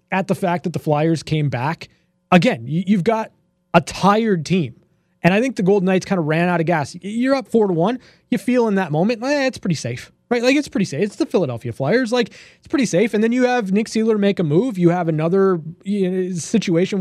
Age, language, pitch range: 20-39, English, 165-200 Hz